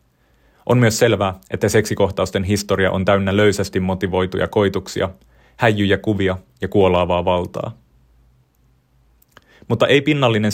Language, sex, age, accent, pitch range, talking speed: Finnish, male, 30-49, native, 95-105 Hz, 110 wpm